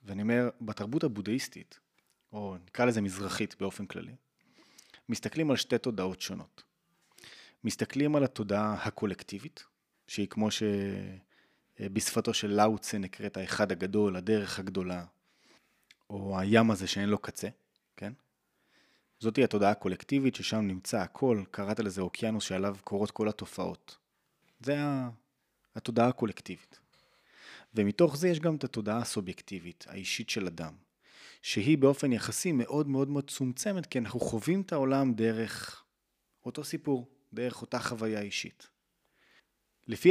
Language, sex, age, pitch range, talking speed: Hebrew, male, 20-39, 100-125 Hz, 125 wpm